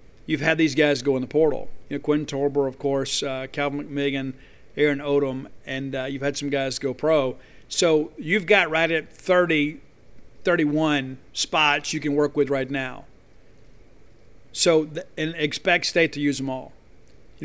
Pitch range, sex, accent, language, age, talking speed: 140-155 Hz, male, American, English, 50-69, 175 wpm